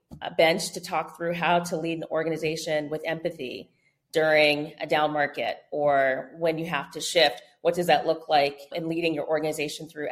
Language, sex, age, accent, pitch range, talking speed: English, female, 30-49, American, 150-180 Hz, 190 wpm